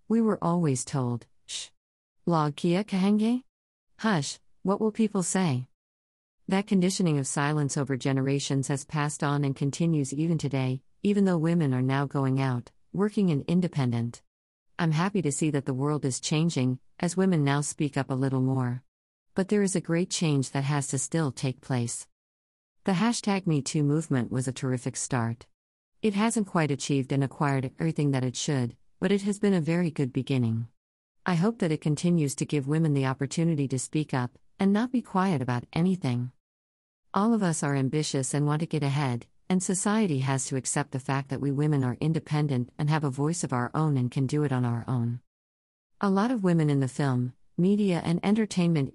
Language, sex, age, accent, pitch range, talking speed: English, female, 50-69, American, 130-170 Hz, 190 wpm